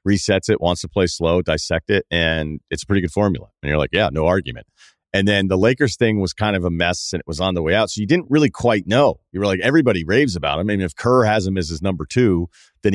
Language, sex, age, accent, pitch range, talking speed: English, male, 40-59, American, 90-115 Hz, 280 wpm